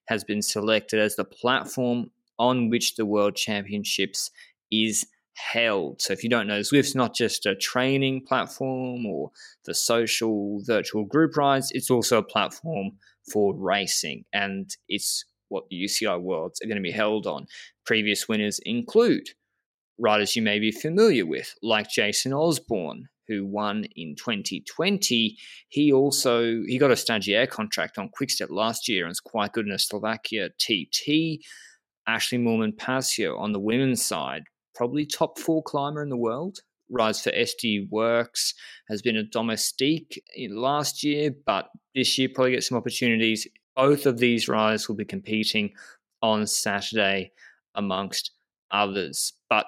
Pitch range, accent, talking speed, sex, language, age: 105-135 Hz, Australian, 150 wpm, male, English, 20-39